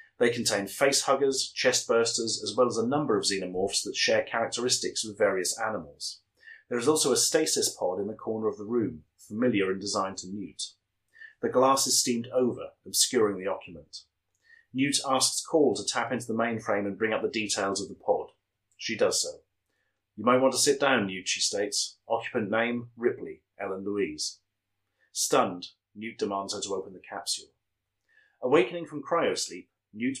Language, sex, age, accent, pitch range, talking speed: English, male, 30-49, British, 100-145 Hz, 175 wpm